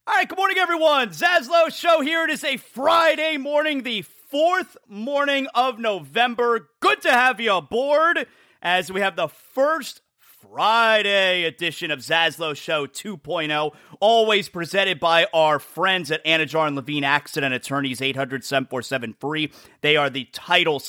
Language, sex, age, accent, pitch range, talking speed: English, male, 30-49, American, 155-235 Hz, 145 wpm